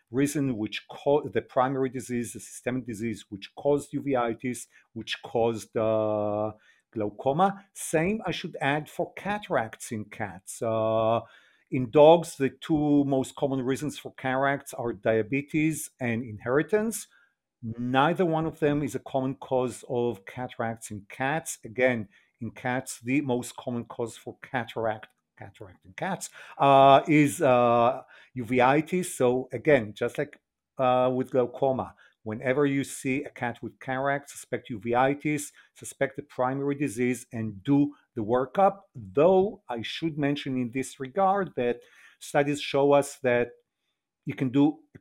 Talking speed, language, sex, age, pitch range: 140 wpm, English, male, 50-69, 120-145 Hz